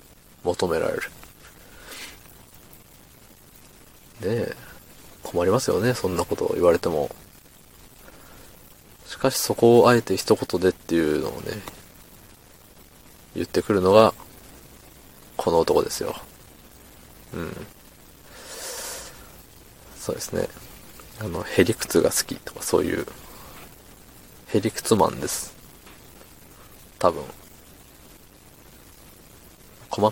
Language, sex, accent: Japanese, male, native